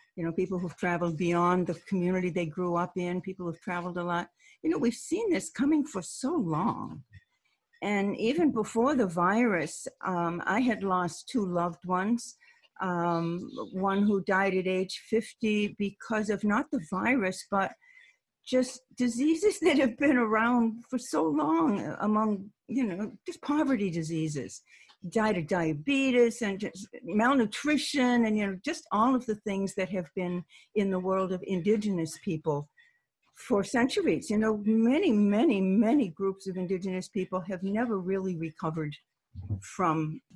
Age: 60-79